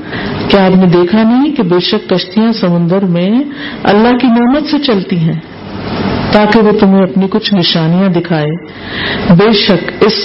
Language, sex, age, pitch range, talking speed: Urdu, female, 50-69, 175-235 Hz, 160 wpm